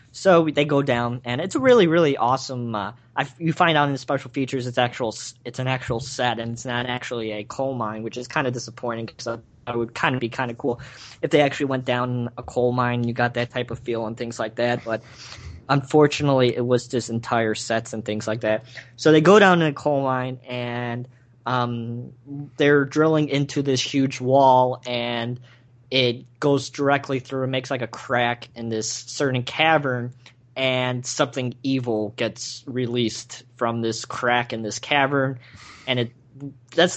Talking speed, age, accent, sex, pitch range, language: 195 wpm, 20-39, American, male, 120-135 Hz, English